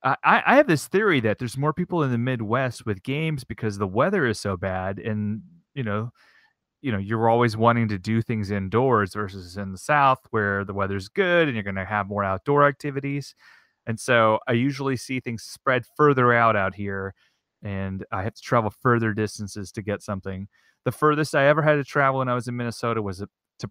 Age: 30-49